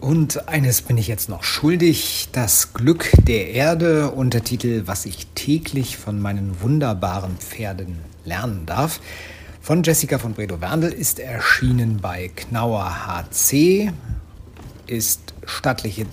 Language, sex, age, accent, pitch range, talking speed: German, male, 50-69, German, 85-130 Hz, 125 wpm